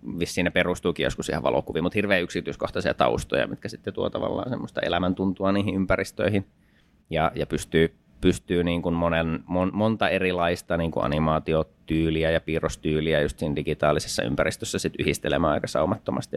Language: Finnish